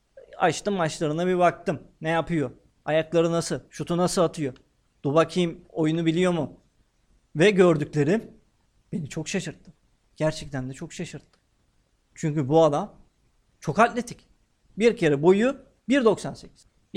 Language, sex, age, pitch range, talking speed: Turkish, male, 50-69, 140-205 Hz, 120 wpm